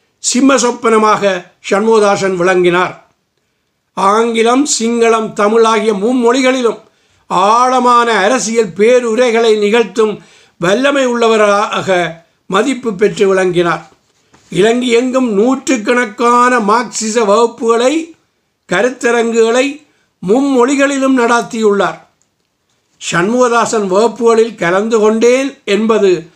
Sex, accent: male, native